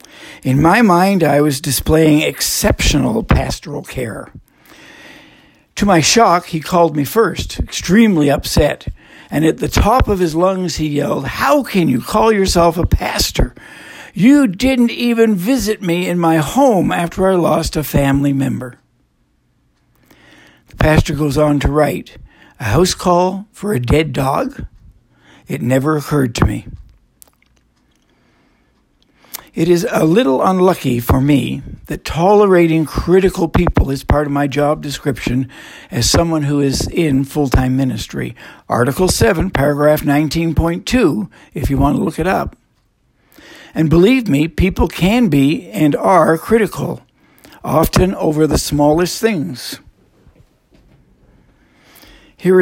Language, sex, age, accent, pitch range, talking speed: English, male, 60-79, American, 140-185 Hz, 130 wpm